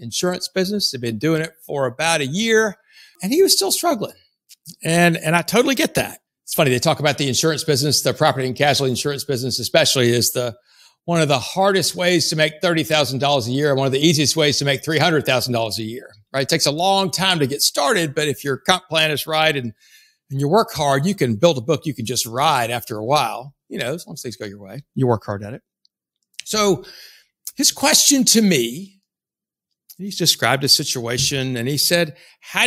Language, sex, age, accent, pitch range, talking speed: English, male, 60-79, American, 125-165 Hz, 230 wpm